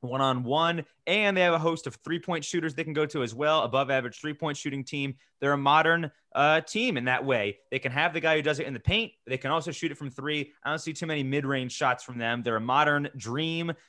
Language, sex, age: English, male, 20-39